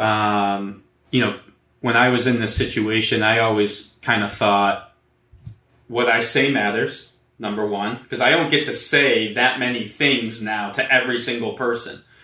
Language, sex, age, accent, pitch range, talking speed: English, male, 20-39, American, 110-125 Hz, 165 wpm